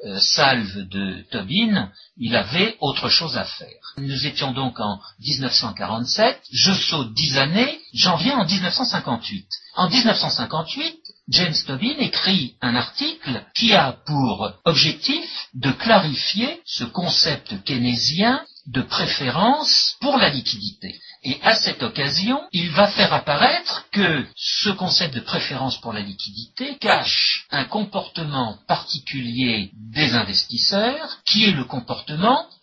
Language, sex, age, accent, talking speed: French, male, 60-79, French, 125 wpm